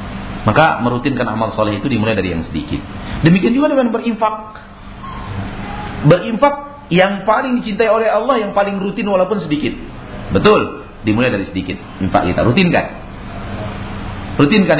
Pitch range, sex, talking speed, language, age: 95-140 Hz, male, 130 wpm, Malay, 40-59